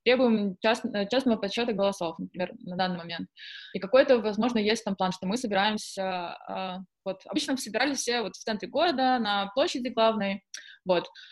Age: 20-39